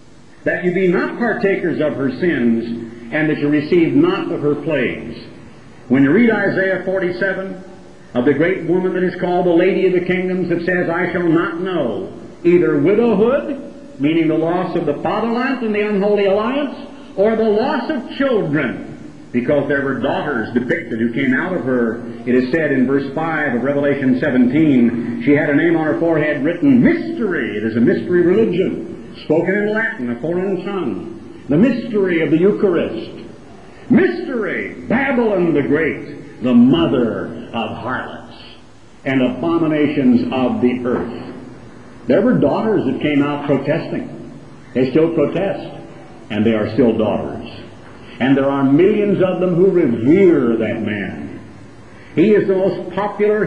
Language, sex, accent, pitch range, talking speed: English, male, American, 140-205 Hz, 160 wpm